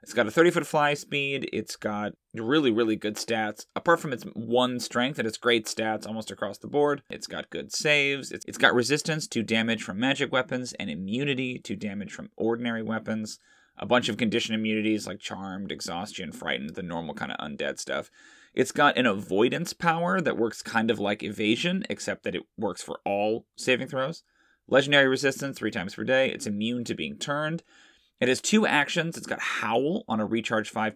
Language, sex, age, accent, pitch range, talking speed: English, male, 30-49, American, 105-140 Hz, 195 wpm